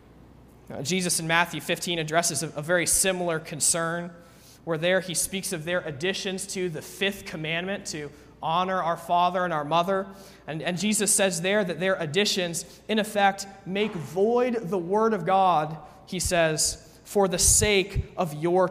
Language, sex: English, male